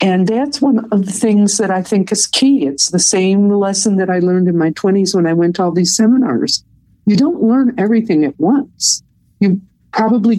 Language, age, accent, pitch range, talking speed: English, 50-69, American, 165-225 Hz, 210 wpm